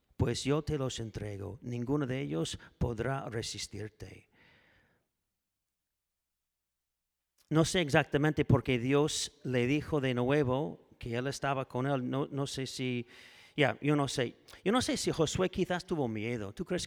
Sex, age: male, 40-59